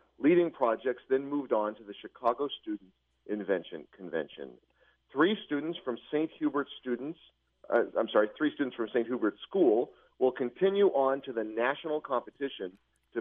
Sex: male